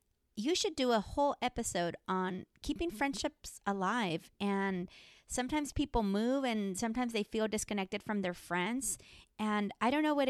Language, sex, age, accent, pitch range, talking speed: English, female, 30-49, American, 195-255 Hz, 155 wpm